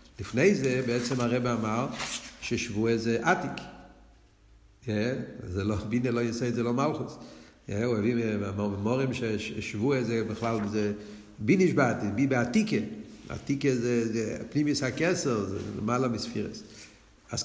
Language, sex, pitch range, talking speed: Hebrew, male, 110-145 Hz, 140 wpm